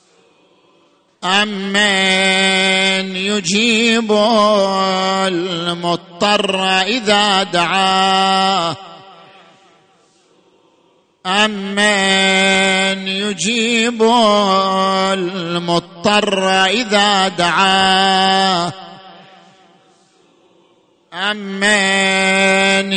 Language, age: Arabic, 40-59